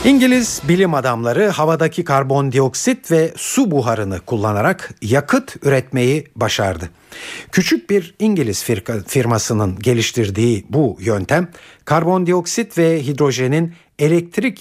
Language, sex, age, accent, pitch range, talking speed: Turkish, male, 60-79, native, 115-165 Hz, 100 wpm